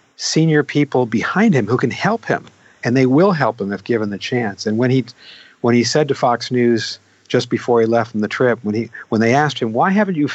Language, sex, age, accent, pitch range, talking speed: English, male, 50-69, American, 115-150 Hz, 245 wpm